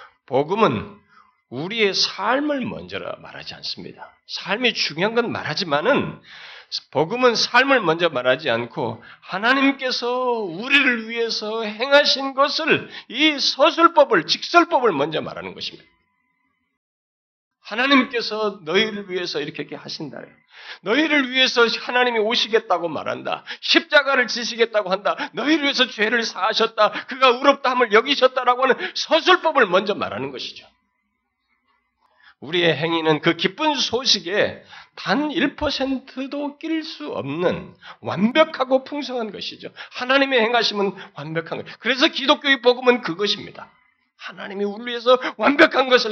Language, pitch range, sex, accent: Korean, 185-260 Hz, male, native